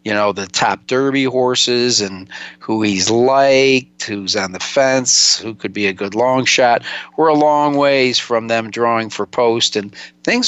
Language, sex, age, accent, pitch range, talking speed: English, male, 50-69, American, 110-130 Hz, 185 wpm